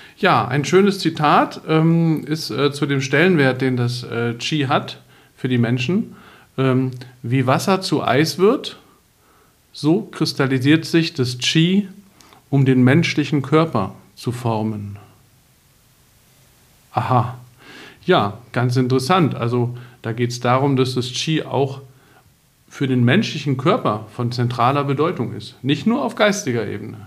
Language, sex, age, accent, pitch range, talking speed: German, male, 50-69, German, 125-155 Hz, 135 wpm